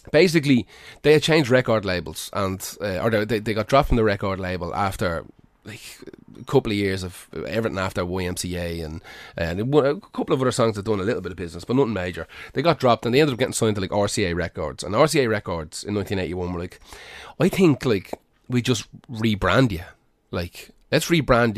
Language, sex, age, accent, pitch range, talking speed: English, male, 30-49, Irish, 95-125 Hz, 205 wpm